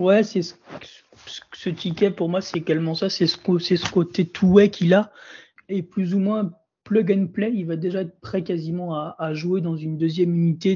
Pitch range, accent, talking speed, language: 165-190 Hz, French, 230 wpm, French